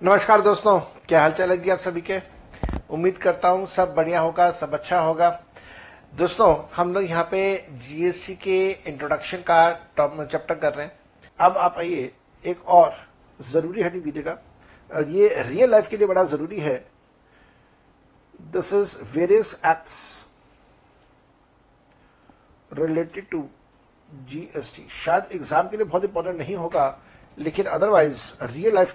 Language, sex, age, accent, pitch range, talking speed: Hindi, male, 60-79, native, 155-190 Hz, 140 wpm